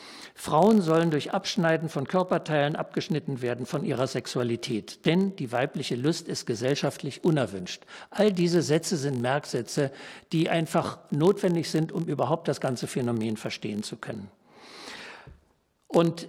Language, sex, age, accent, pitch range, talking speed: German, male, 60-79, German, 145-185 Hz, 135 wpm